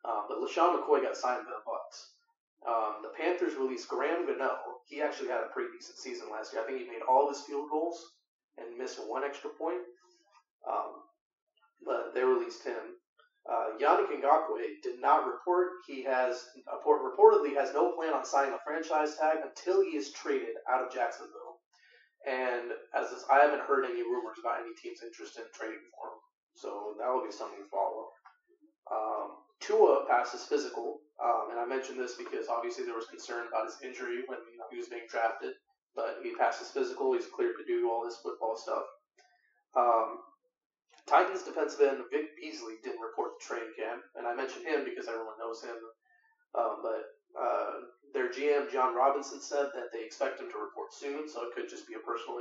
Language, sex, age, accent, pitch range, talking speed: English, male, 30-49, American, 310-425 Hz, 190 wpm